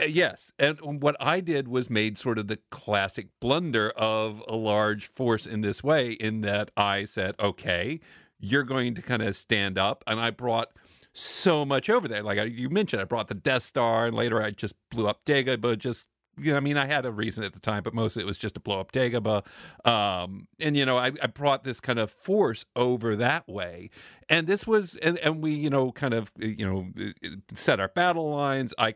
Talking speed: 210 wpm